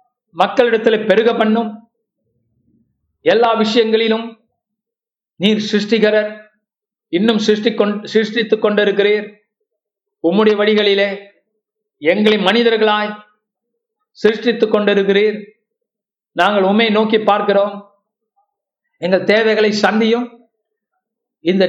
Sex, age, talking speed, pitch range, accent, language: male, 50-69, 70 wpm, 215-250 Hz, native, Tamil